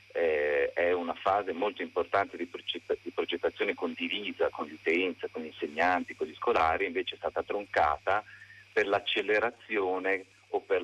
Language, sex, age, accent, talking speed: Italian, male, 40-59, native, 135 wpm